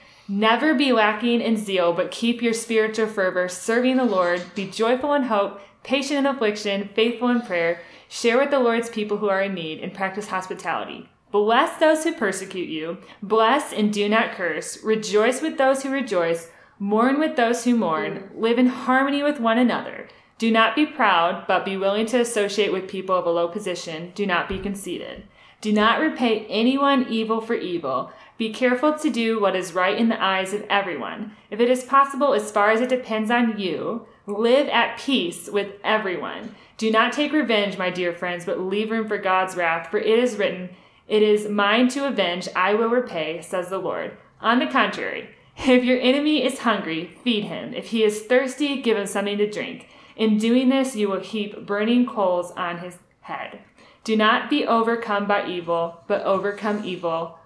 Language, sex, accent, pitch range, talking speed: English, female, American, 195-245 Hz, 190 wpm